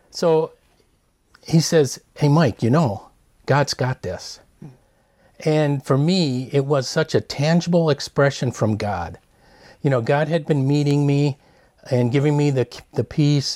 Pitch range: 120-150 Hz